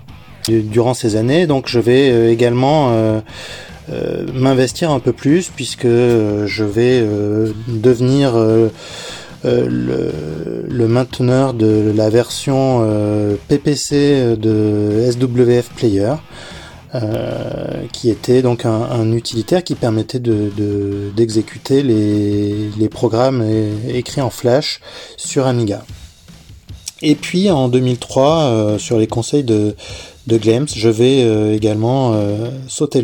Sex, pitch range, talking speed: male, 110-130 Hz, 125 wpm